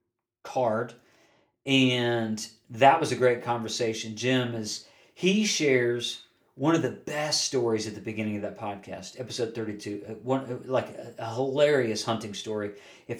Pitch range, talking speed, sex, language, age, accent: 115-140 Hz, 155 wpm, male, English, 40-59, American